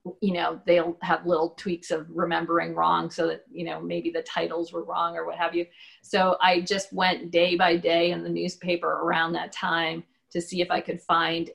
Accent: American